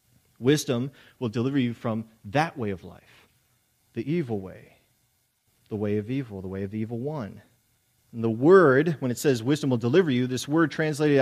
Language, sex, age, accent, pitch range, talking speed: English, male, 30-49, American, 115-150 Hz, 185 wpm